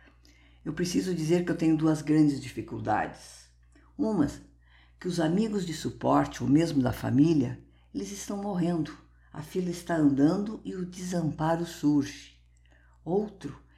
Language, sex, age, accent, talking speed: Portuguese, female, 50-69, Brazilian, 135 wpm